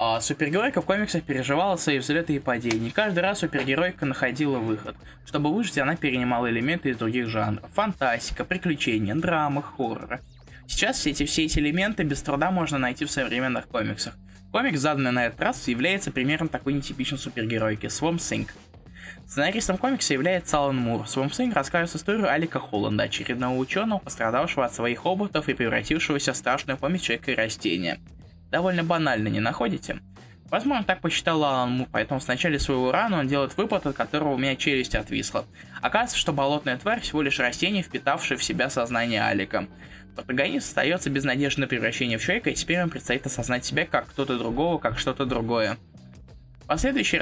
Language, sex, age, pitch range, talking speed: Russian, male, 20-39, 120-160 Hz, 165 wpm